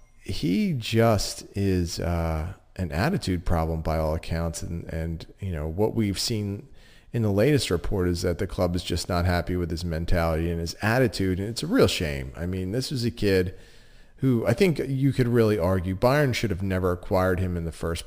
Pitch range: 85-115 Hz